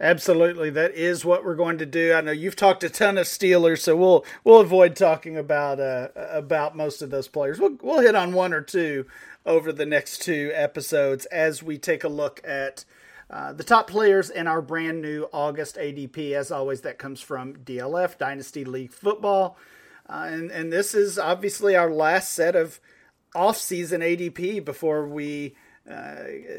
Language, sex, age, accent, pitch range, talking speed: English, male, 40-59, American, 145-185 Hz, 180 wpm